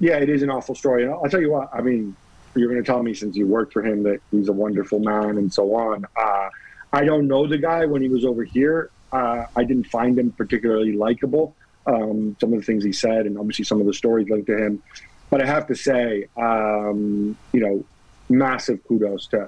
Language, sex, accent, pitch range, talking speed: English, male, American, 105-130 Hz, 230 wpm